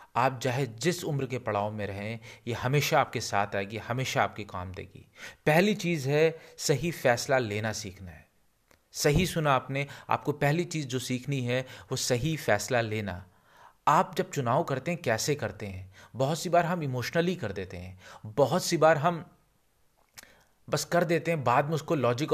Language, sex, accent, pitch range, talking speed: Hindi, male, native, 110-145 Hz, 175 wpm